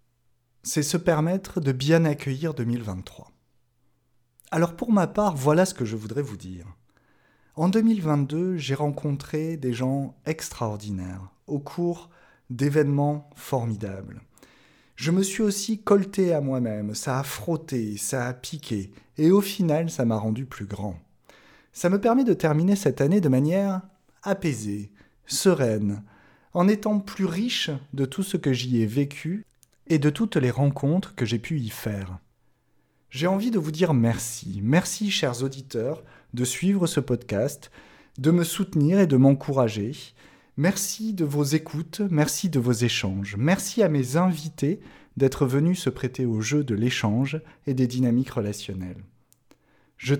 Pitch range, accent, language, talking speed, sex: 120-170 Hz, French, French, 150 wpm, male